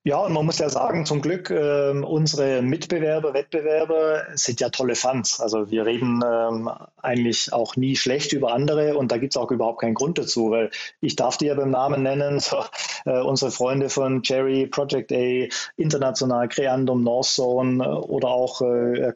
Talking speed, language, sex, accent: 180 wpm, German, male, German